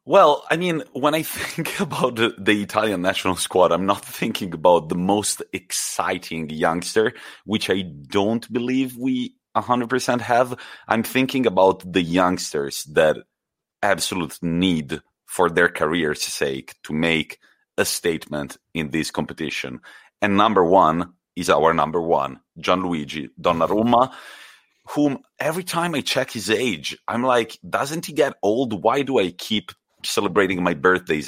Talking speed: 145 wpm